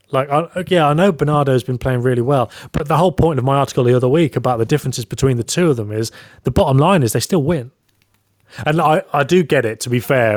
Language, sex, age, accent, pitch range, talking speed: English, male, 30-49, British, 110-135 Hz, 255 wpm